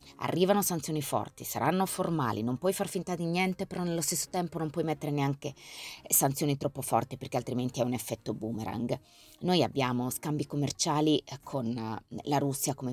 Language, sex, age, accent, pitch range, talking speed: Italian, female, 20-39, native, 120-155 Hz, 165 wpm